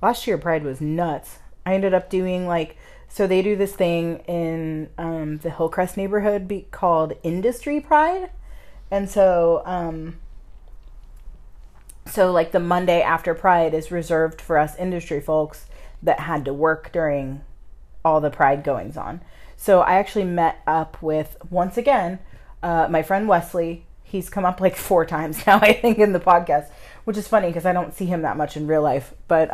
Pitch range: 150-180 Hz